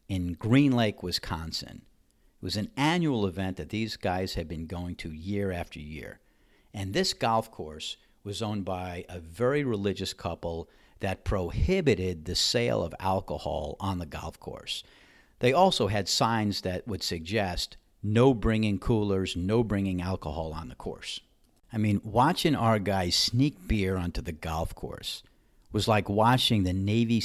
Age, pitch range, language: 50-69, 90-115 Hz, English